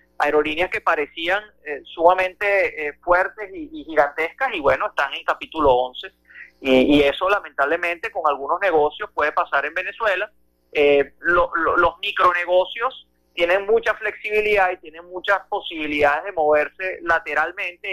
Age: 30-49